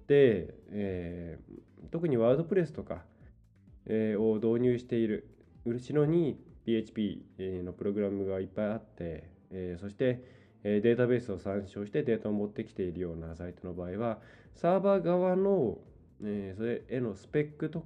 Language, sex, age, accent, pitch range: Japanese, male, 20-39, native, 95-130 Hz